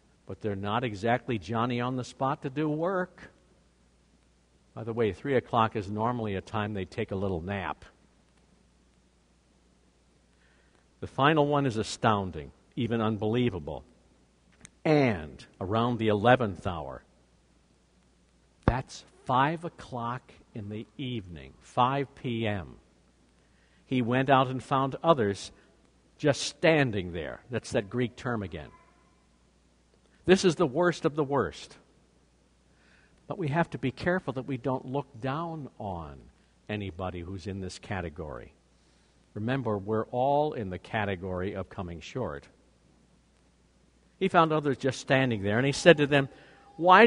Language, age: English, 60-79